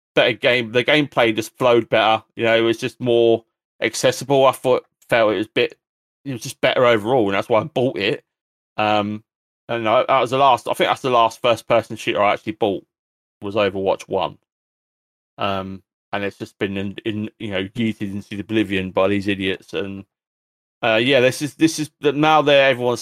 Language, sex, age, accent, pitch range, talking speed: English, male, 30-49, British, 105-125 Hz, 210 wpm